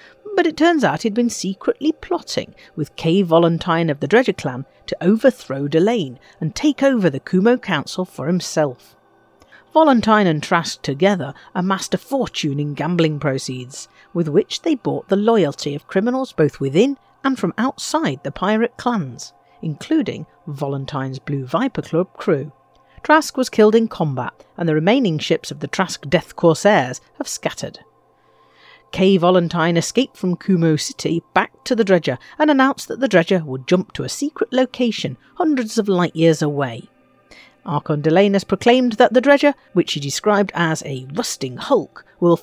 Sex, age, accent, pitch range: female, 50-69, British, 160-240 Hz